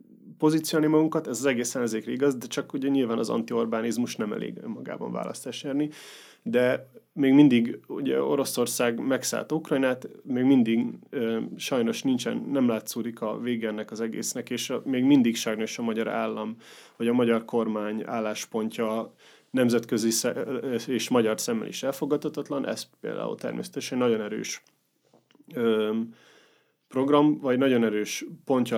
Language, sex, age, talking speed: Hungarian, male, 30-49, 140 wpm